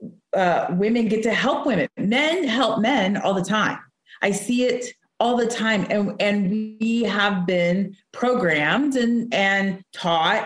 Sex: female